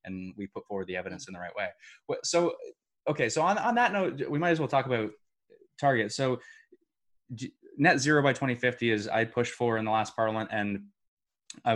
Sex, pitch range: male, 100-125 Hz